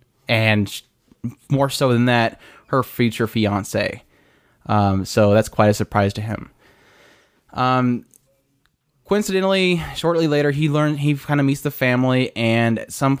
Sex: male